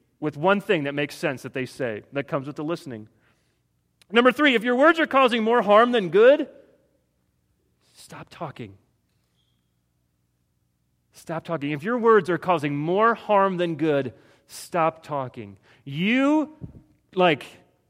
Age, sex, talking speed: 30-49, male, 140 wpm